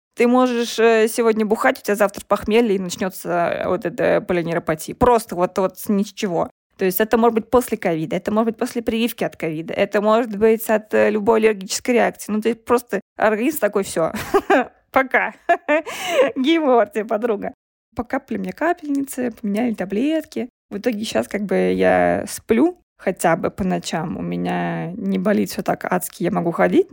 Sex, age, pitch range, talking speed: female, 20-39, 185-235 Hz, 165 wpm